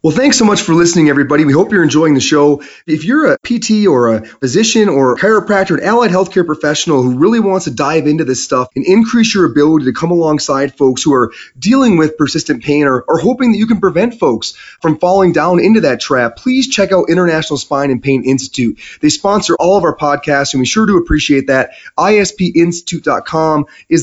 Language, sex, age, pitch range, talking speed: English, male, 30-49, 140-180 Hz, 215 wpm